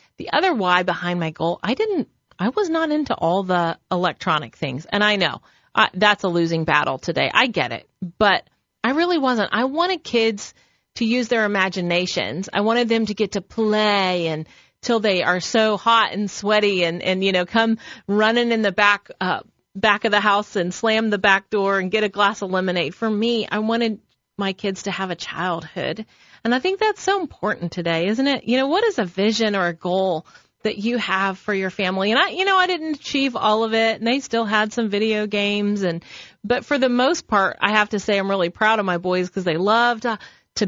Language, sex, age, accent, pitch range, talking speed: English, female, 30-49, American, 180-225 Hz, 225 wpm